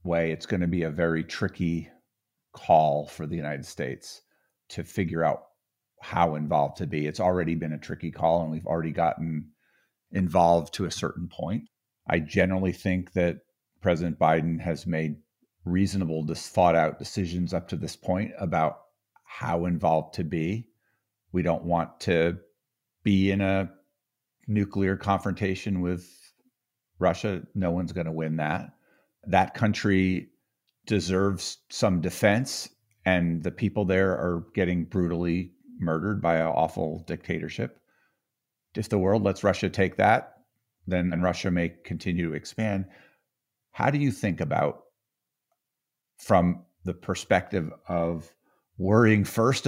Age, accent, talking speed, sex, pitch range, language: 50-69, American, 135 wpm, male, 85-105 Hz, English